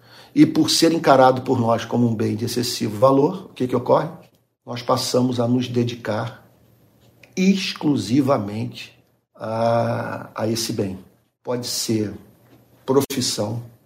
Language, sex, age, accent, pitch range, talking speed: Portuguese, male, 50-69, Brazilian, 110-130 Hz, 125 wpm